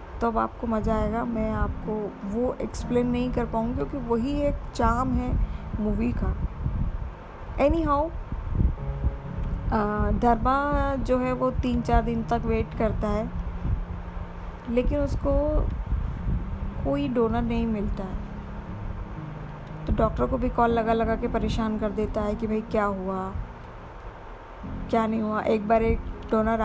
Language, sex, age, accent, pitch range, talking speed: Hindi, female, 20-39, native, 200-240 Hz, 135 wpm